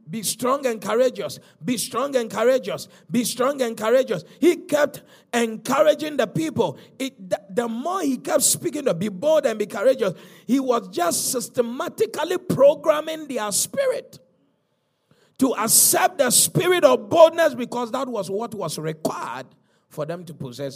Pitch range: 185-255 Hz